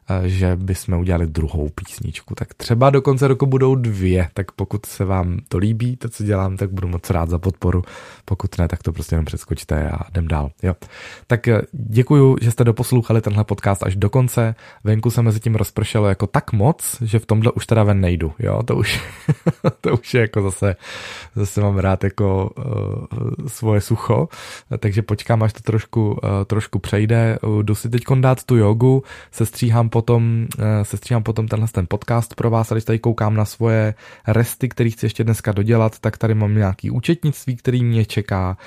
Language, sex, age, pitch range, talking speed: Czech, male, 20-39, 100-115 Hz, 190 wpm